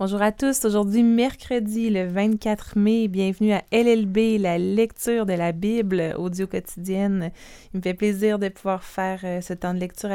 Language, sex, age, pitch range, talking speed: French, female, 20-39, 190-230 Hz, 175 wpm